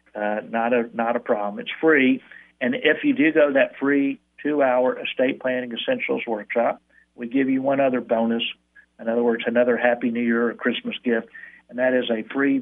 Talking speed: 200 wpm